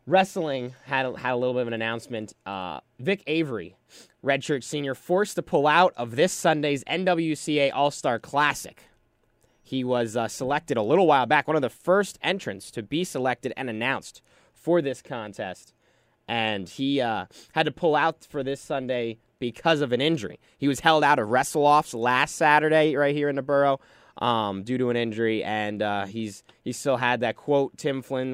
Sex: male